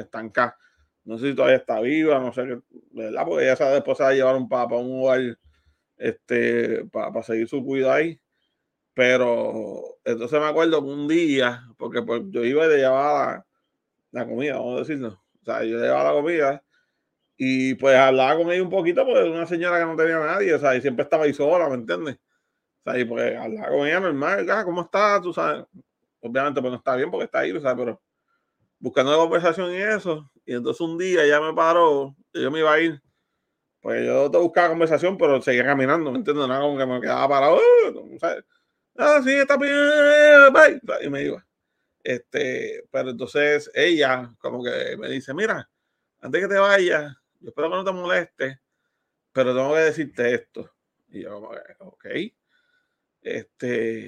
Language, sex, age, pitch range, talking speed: Spanish, male, 30-49, 130-180 Hz, 190 wpm